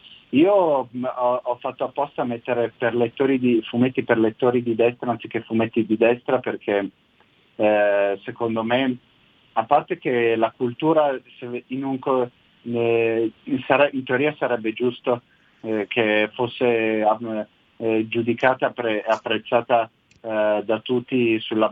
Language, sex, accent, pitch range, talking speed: Italian, male, native, 110-125 Hz, 125 wpm